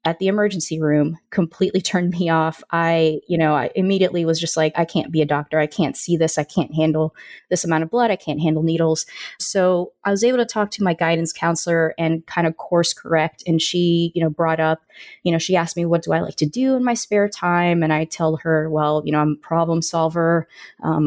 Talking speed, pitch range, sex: 240 wpm, 160-185 Hz, female